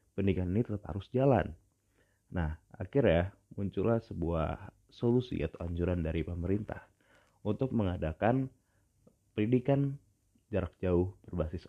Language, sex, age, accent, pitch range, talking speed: Indonesian, male, 30-49, native, 85-105 Hz, 105 wpm